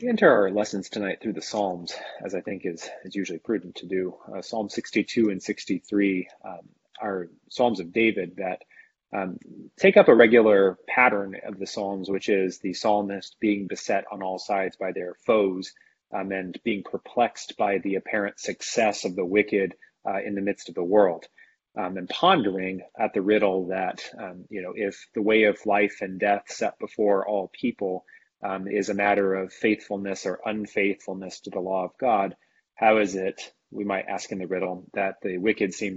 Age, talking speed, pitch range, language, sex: 30-49, 190 wpm, 95-105 Hz, English, male